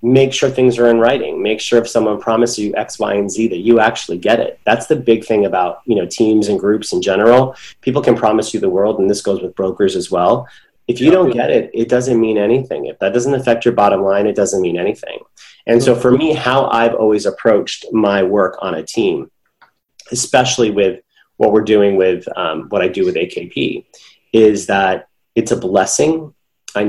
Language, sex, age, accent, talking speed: English, male, 30-49, American, 215 wpm